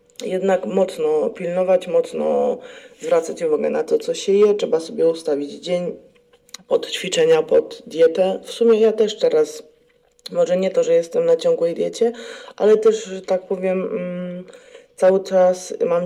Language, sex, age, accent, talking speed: Polish, female, 20-39, native, 150 wpm